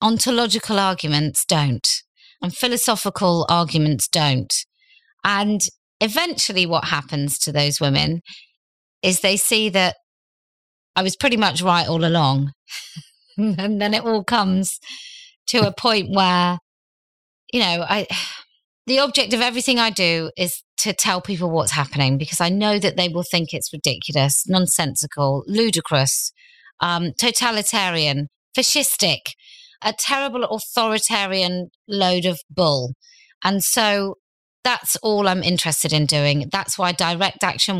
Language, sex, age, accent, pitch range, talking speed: English, female, 30-49, British, 160-210 Hz, 130 wpm